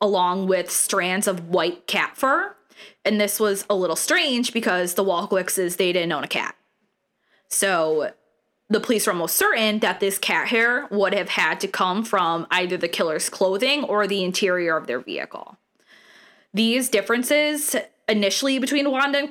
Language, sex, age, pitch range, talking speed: English, female, 20-39, 180-225 Hz, 170 wpm